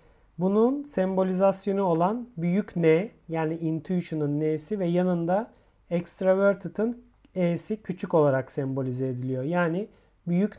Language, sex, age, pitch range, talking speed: Turkish, male, 40-59, 165-210 Hz, 100 wpm